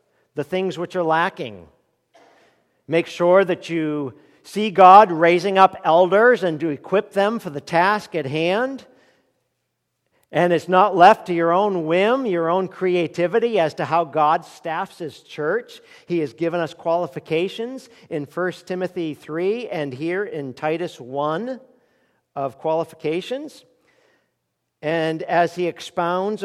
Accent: American